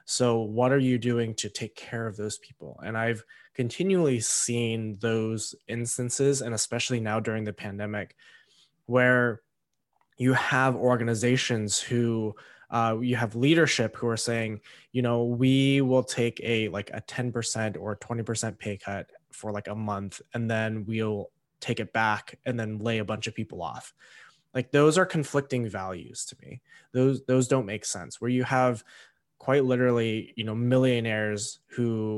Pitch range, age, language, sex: 105-125 Hz, 20-39, English, male